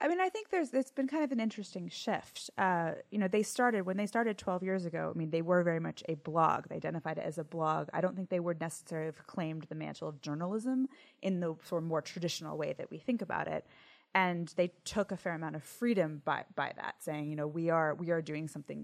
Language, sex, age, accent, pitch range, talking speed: English, female, 20-39, American, 155-185 Hz, 260 wpm